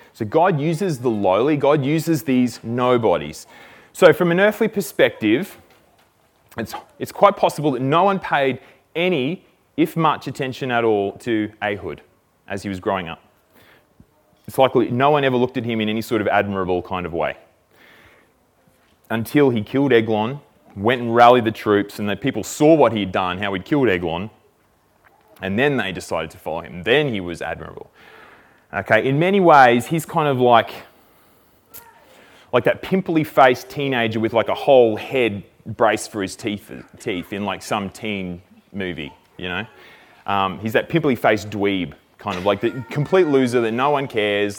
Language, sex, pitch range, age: English, male, 100-145 Hz, 20-39